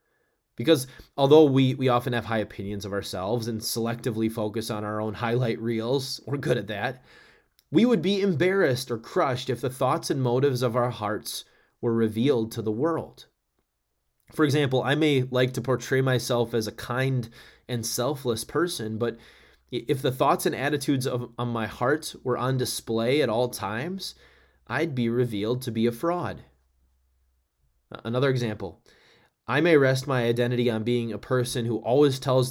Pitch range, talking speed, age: 115-135 Hz, 170 wpm, 20-39